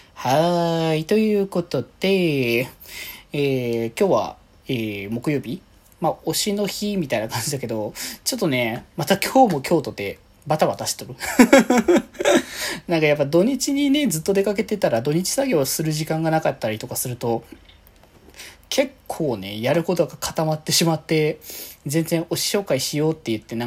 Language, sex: Japanese, male